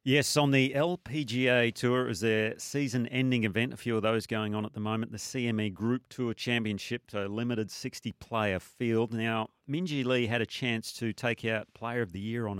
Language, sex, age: English, male, 40-59